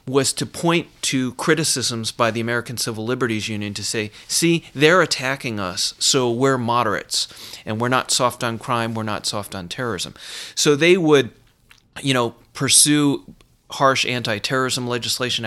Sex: male